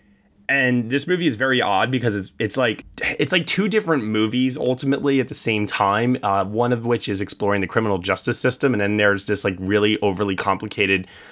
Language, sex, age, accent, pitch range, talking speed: English, male, 20-39, American, 95-130 Hz, 200 wpm